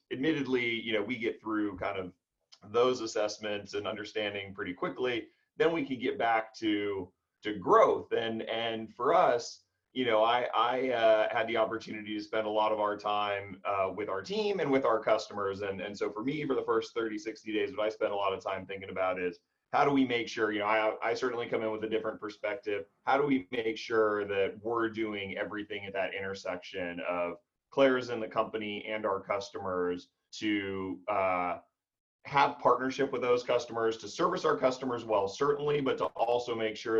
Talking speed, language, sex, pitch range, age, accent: 200 wpm, English, male, 100-120 Hz, 30-49, American